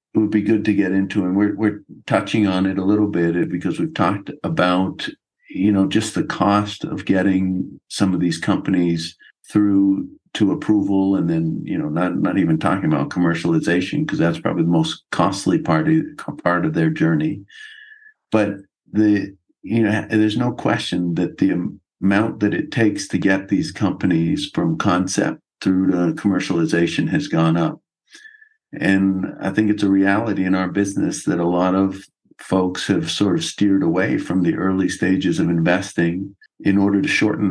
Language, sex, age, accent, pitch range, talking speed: English, male, 50-69, American, 95-110 Hz, 175 wpm